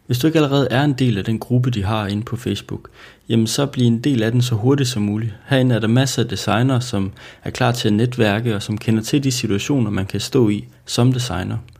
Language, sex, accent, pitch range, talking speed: Danish, male, native, 110-130 Hz, 255 wpm